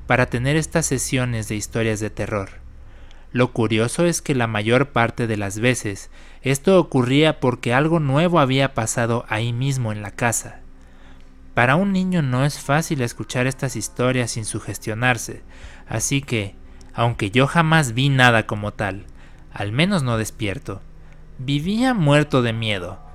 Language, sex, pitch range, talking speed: Spanish, male, 105-145 Hz, 150 wpm